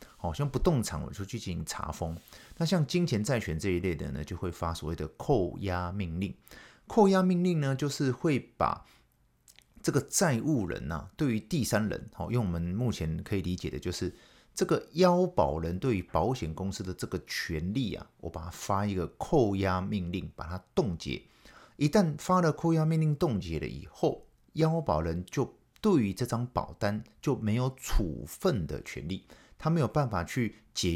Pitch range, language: 90-145 Hz, Chinese